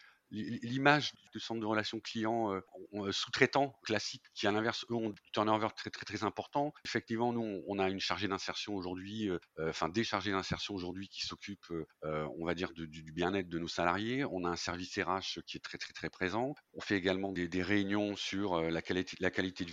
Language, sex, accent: French, male, French